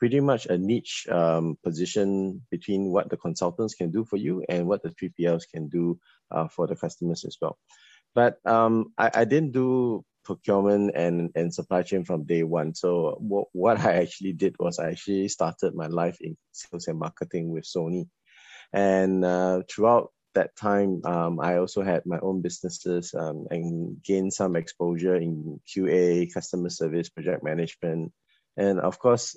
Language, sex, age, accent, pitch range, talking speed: English, male, 20-39, Malaysian, 85-100 Hz, 170 wpm